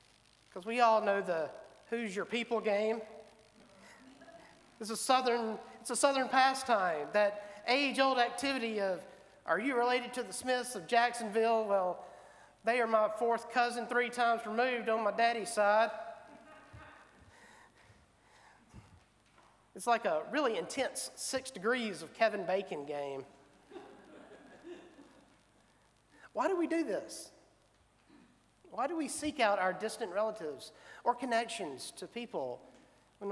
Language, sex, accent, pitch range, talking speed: English, male, American, 170-240 Hz, 125 wpm